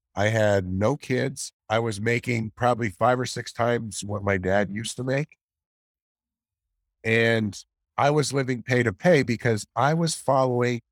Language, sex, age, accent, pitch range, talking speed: English, male, 50-69, American, 90-115 Hz, 160 wpm